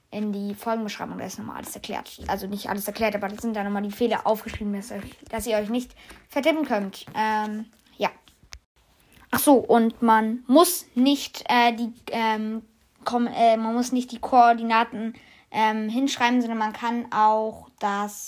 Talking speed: 165 wpm